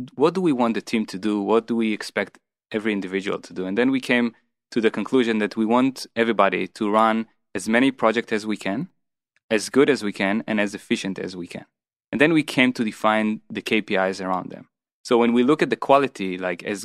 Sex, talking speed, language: male, 230 wpm, Hebrew